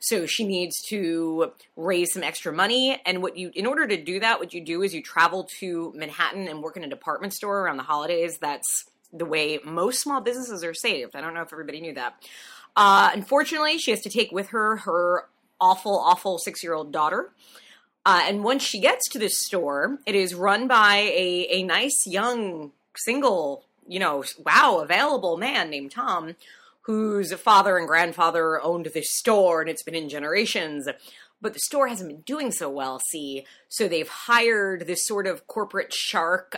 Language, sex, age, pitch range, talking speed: English, female, 20-39, 160-210 Hz, 185 wpm